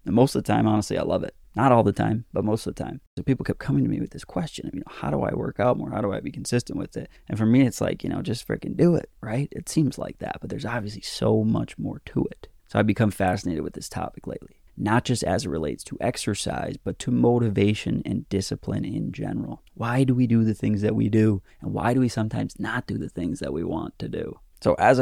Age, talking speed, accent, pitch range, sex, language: 20-39, 270 wpm, American, 100-115 Hz, male, English